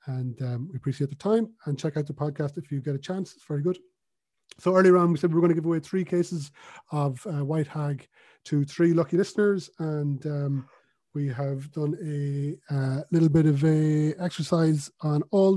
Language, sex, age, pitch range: English, male, 30-49, 135-170 Hz